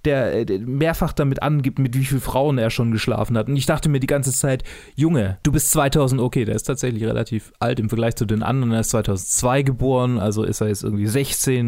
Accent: German